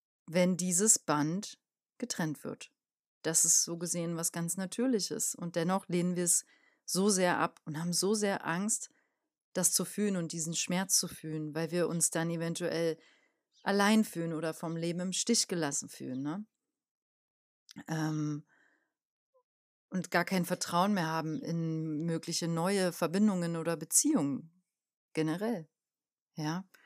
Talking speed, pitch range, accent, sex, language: 140 wpm, 165-195 Hz, German, female, German